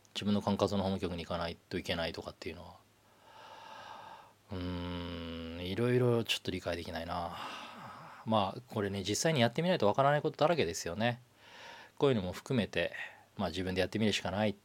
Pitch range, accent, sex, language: 95-125 Hz, native, male, Japanese